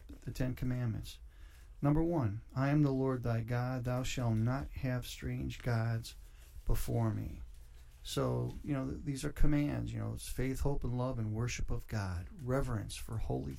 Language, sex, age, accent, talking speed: English, male, 50-69, American, 170 wpm